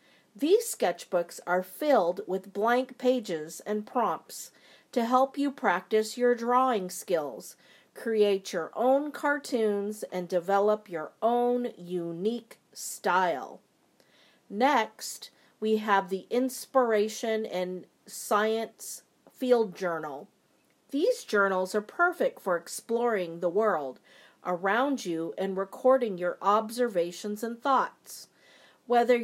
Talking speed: 105 wpm